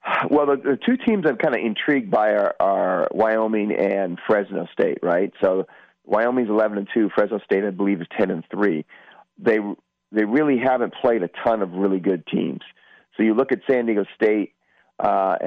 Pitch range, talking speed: 90-110 Hz, 190 wpm